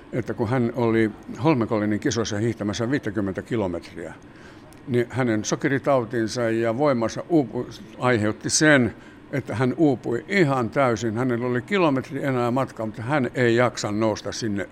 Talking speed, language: 130 wpm, Finnish